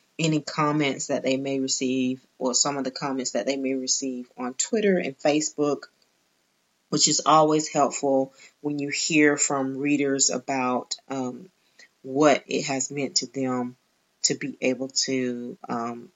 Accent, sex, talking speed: American, female, 150 wpm